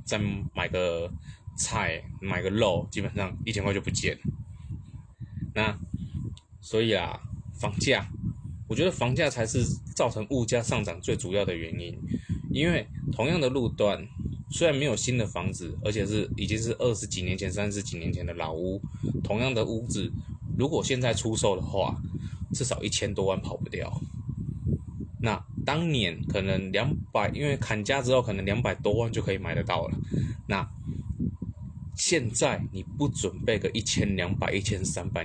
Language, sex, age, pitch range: Chinese, male, 20-39, 95-115 Hz